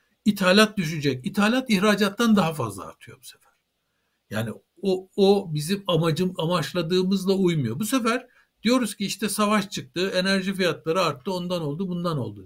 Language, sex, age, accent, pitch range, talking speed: Turkish, male, 60-79, native, 155-215 Hz, 145 wpm